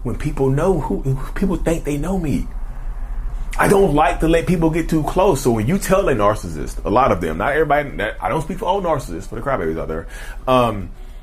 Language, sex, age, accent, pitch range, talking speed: English, male, 30-49, American, 110-145 Hz, 225 wpm